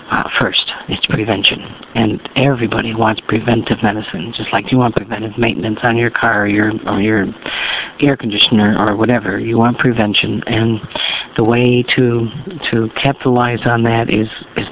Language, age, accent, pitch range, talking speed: English, 50-69, American, 110-130 Hz, 165 wpm